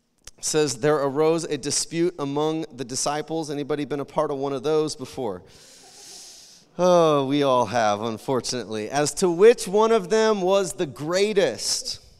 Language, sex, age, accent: English, male, 30-49, American